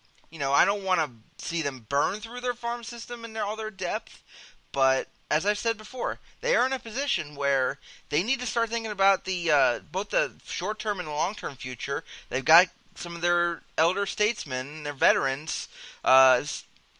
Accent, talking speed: American, 185 wpm